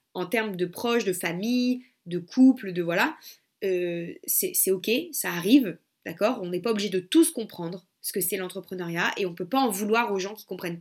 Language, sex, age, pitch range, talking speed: French, female, 20-39, 195-250 Hz, 220 wpm